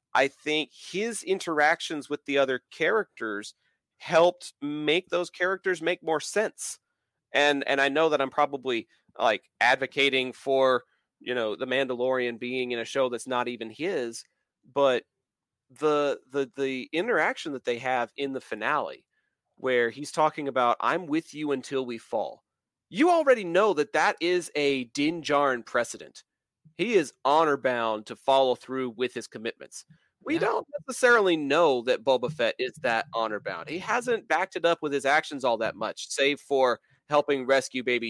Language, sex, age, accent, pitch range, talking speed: English, male, 30-49, American, 130-180 Hz, 165 wpm